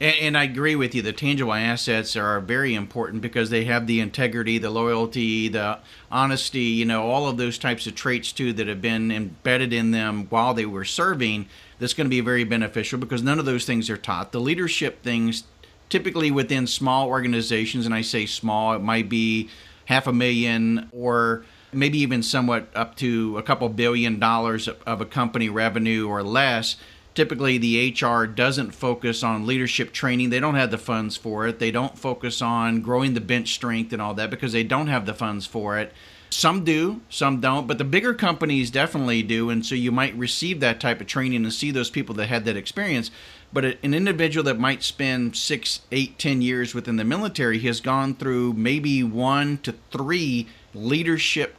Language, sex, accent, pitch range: English, male, American, 115-130 Hz